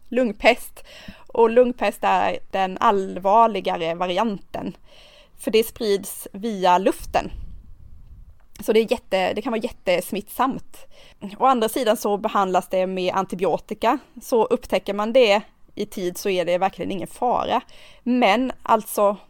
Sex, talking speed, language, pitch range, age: female, 135 wpm, Swedish, 185-230 Hz, 20-39